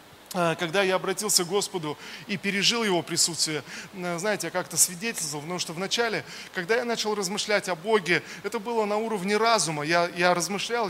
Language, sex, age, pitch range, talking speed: Russian, male, 20-39, 180-220 Hz, 165 wpm